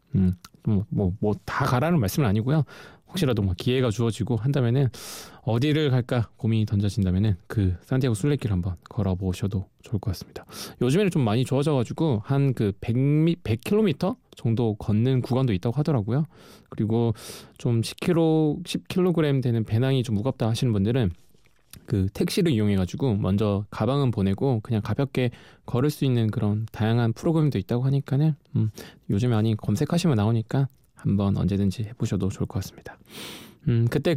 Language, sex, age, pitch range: Korean, male, 20-39, 100-140 Hz